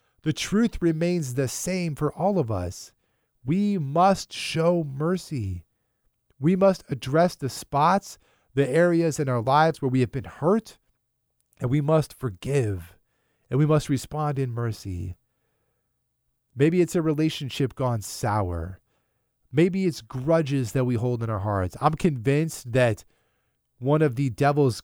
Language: English